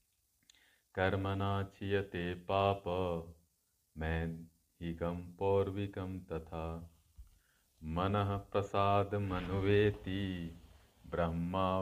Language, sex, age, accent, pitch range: Hindi, male, 40-59, native, 85-100 Hz